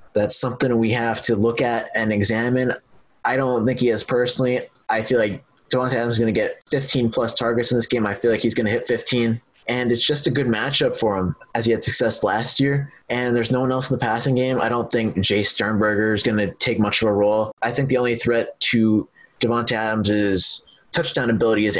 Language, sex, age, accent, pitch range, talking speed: English, male, 20-39, American, 105-125 Hz, 235 wpm